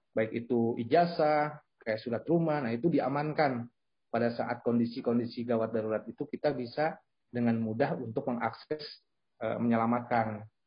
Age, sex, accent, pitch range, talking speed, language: 30-49, male, native, 120-150 Hz, 130 wpm, Indonesian